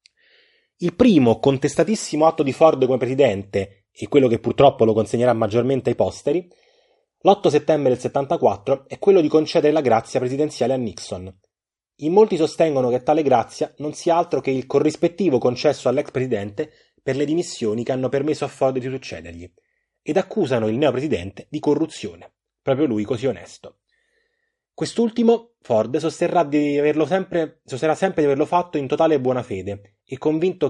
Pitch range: 120-155 Hz